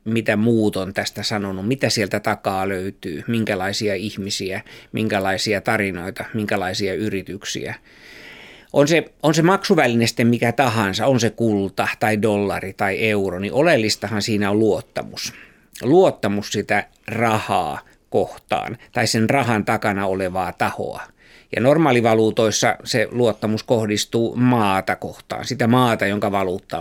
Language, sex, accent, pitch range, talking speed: Finnish, male, native, 100-115 Hz, 125 wpm